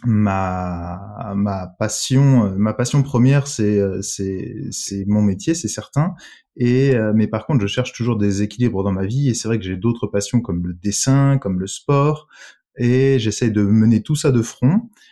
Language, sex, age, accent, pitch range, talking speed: French, male, 20-39, French, 100-130 Hz, 185 wpm